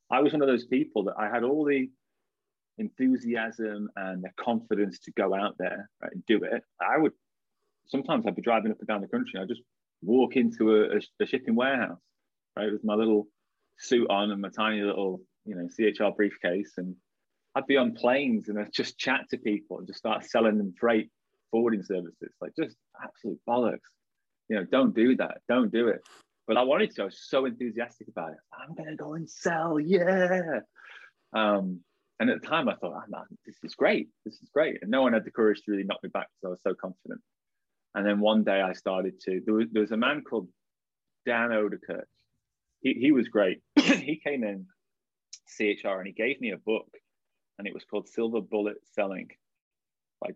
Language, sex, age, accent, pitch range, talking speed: English, male, 20-39, British, 105-130 Hz, 205 wpm